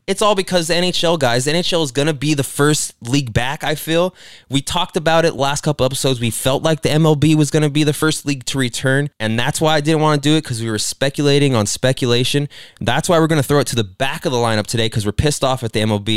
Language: English